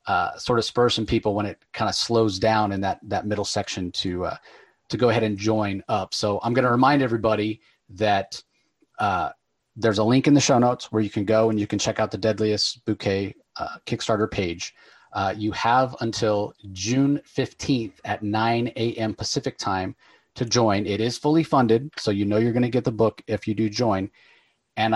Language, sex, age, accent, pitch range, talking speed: English, male, 30-49, American, 105-125 Hz, 205 wpm